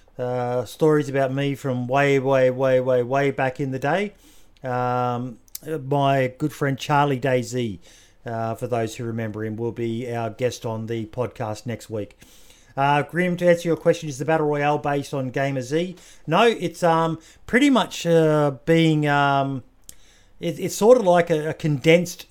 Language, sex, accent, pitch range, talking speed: English, male, Australian, 120-150 Hz, 175 wpm